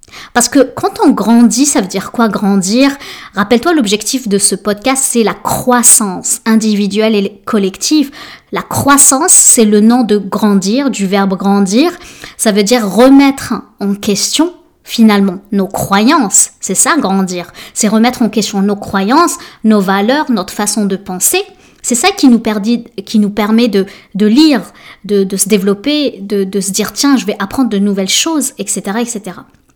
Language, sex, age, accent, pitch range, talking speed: French, female, 20-39, French, 205-270 Hz, 160 wpm